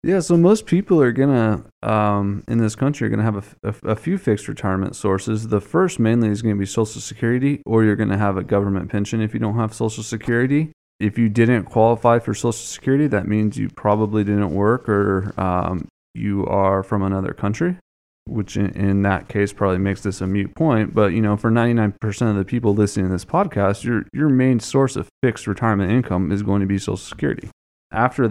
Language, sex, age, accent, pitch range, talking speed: English, male, 20-39, American, 100-120 Hz, 220 wpm